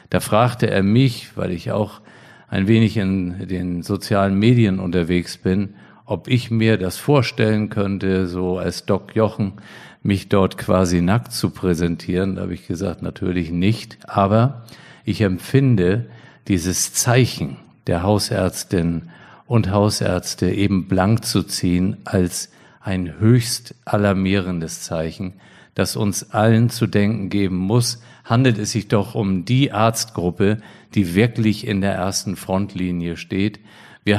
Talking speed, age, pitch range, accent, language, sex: 135 wpm, 50-69, 95-115 Hz, German, German, male